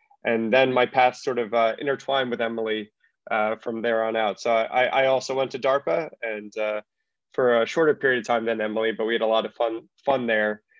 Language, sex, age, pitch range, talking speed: English, male, 20-39, 115-135 Hz, 230 wpm